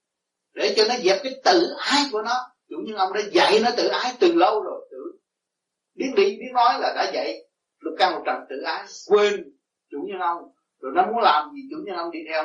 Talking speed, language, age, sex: 225 wpm, Vietnamese, 30-49, male